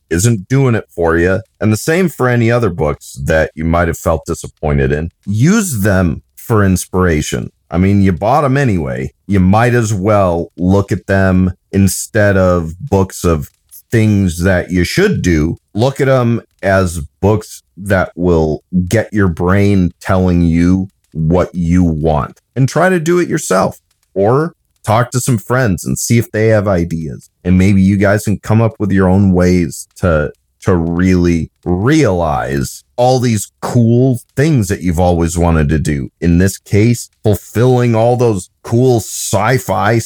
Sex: male